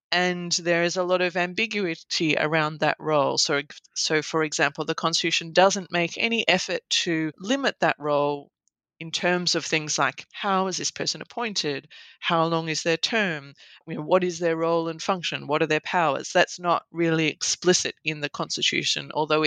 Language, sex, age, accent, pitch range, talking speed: English, female, 30-49, Australian, 155-195 Hz, 180 wpm